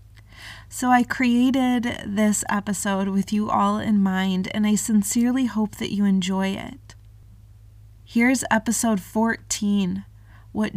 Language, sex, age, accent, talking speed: English, female, 20-39, American, 125 wpm